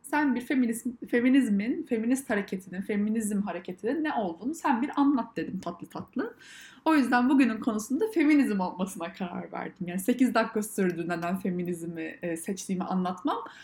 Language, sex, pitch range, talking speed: Turkish, female, 195-260 Hz, 140 wpm